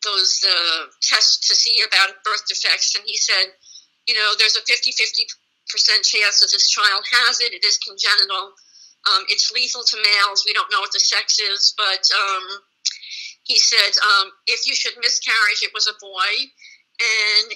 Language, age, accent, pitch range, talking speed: English, 50-69, American, 215-350 Hz, 175 wpm